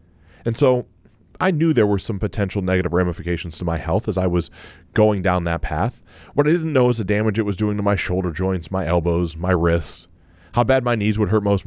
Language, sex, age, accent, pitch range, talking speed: English, male, 30-49, American, 85-115 Hz, 230 wpm